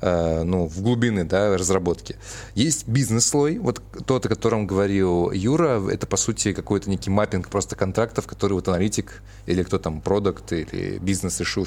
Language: Russian